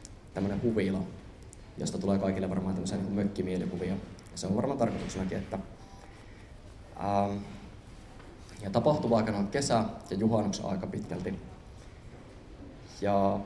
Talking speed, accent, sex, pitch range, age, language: 100 wpm, native, male, 95-115 Hz, 20-39, Finnish